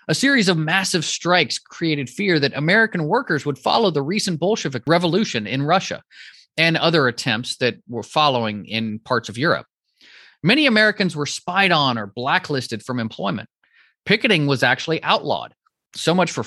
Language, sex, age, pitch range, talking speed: English, male, 30-49, 130-185 Hz, 160 wpm